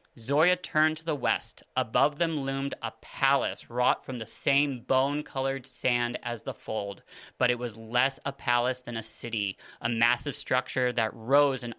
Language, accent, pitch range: English, American, 120-155 Hz